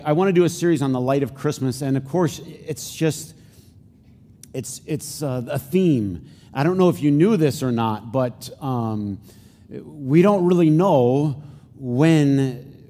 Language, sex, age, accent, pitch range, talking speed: English, male, 40-59, American, 120-150 Hz, 170 wpm